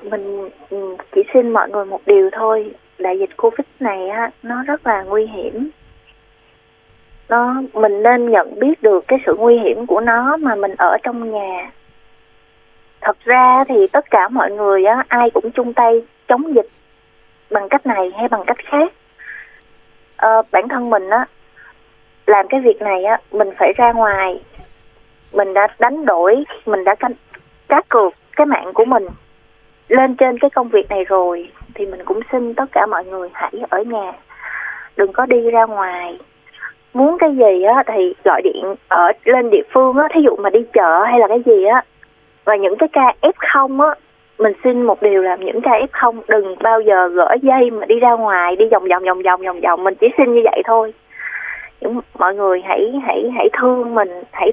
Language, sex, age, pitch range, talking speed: Vietnamese, female, 20-39, 200-260 Hz, 185 wpm